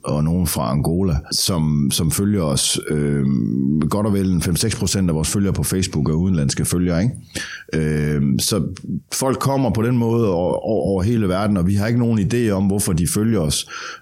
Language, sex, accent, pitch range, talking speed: Danish, male, native, 85-110 Hz, 170 wpm